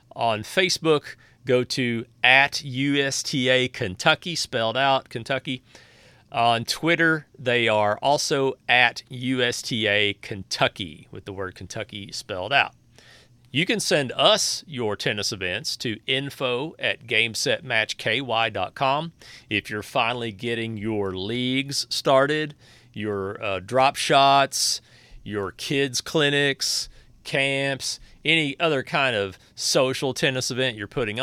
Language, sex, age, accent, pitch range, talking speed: English, male, 40-59, American, 115-140 Hz, 115 wpm